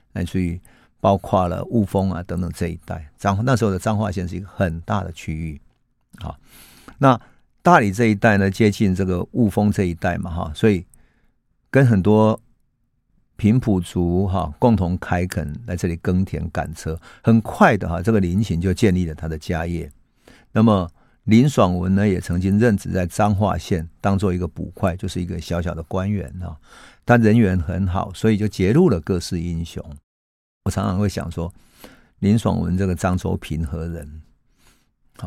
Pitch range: 85-105 Hz